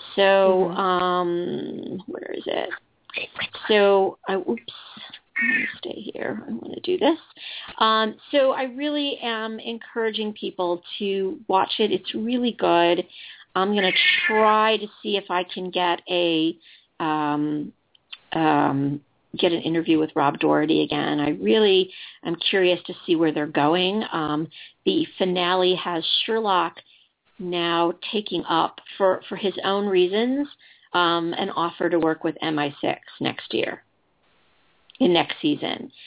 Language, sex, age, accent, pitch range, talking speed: English, female, 40-59, American, 170-220 Hz, 140 wpm